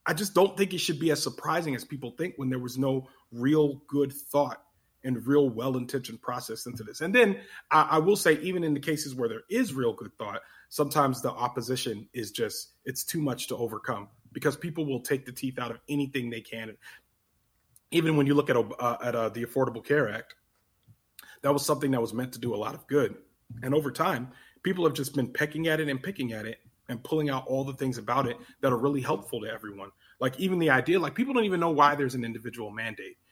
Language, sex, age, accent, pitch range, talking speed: English, male, 30-49, American, 130-195 Hz, 230 wpm